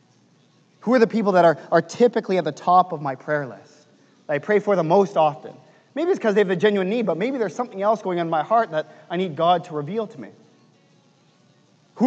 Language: English